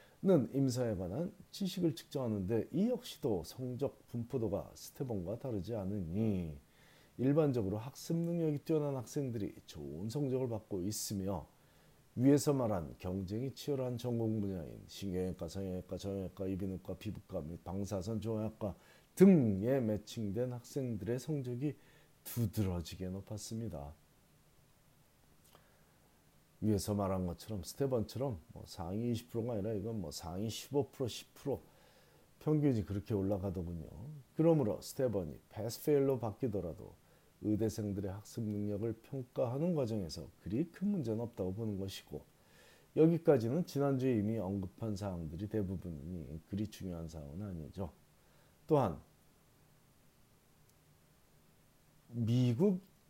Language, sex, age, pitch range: Korean, male, 40-59, 95-135 Hz